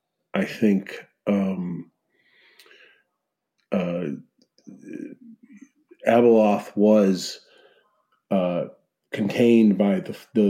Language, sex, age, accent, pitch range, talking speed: English, male, 40-59, American, 95-115 Hz, 65 wpm